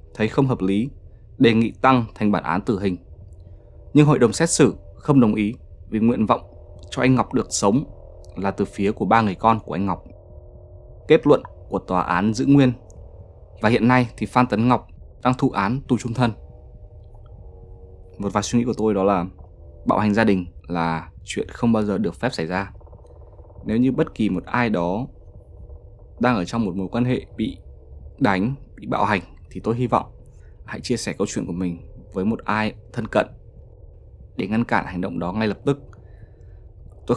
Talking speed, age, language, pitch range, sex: 200 wpm, 20-39, Vietnamese, 90-115 Hz, male